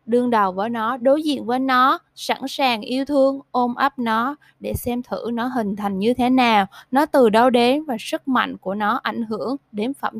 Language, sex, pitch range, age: Vietnamese, female, 215-270 Hz, 20-39